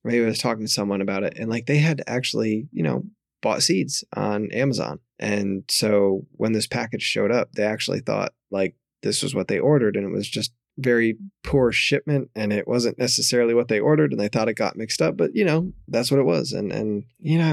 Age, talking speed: 20-39, 230 wpm